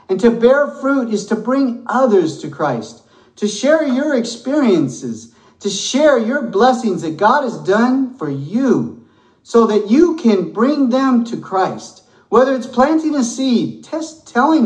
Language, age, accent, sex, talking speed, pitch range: English, 50-69, American, male, 160 wpm, 200-265 Hz